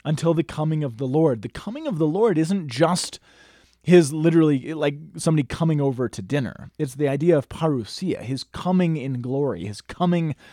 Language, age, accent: English, 30-49, American